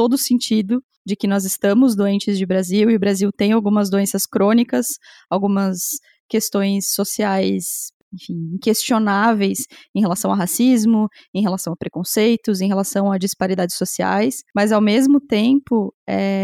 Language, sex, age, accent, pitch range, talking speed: Portuguese, female, 20-39, Brazilian, 200-230 Hz, 140 wpm